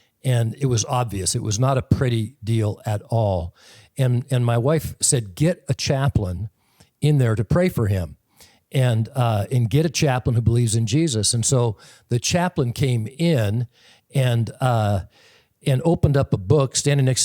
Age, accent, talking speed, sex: 60-79, American, 175 wpm, male